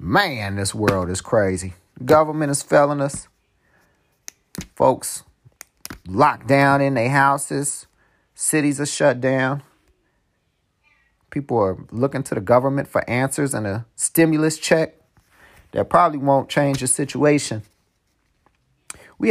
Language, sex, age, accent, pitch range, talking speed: English, male, 40-59, American, 110-145 Hz, 120 wpm